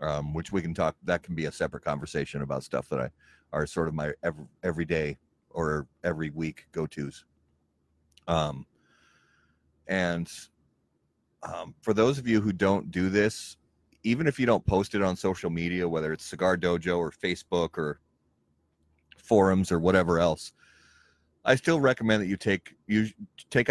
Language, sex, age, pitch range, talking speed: English, male, 30-49, 80-95 Hz, 165 wpm